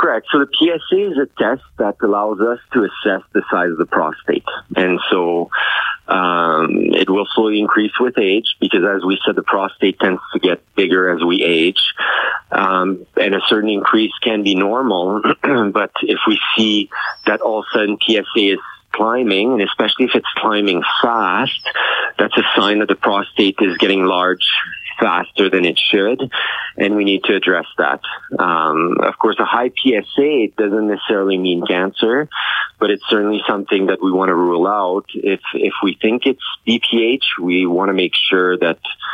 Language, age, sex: English, 40-59, male